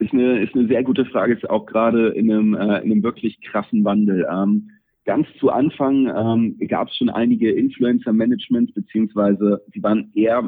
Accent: German